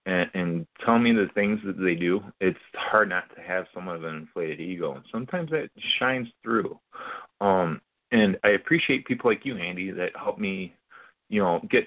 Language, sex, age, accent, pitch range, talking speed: English, male, 20-39, American, 95-110 Hz, 185 wpm